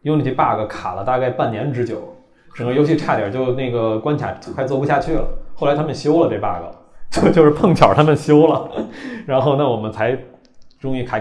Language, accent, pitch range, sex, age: Chinese, native, 105-135 Hz, male, 20-39